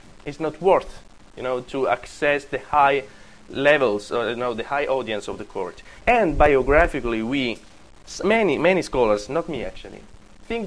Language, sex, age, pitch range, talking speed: French, male, 20-39, 120-165 Hz, 165 wpm